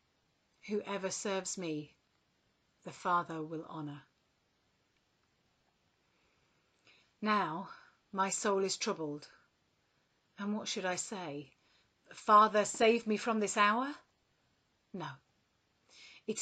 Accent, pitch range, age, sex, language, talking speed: British, 165-220 Hz, 40-59, female, English, 90 wpm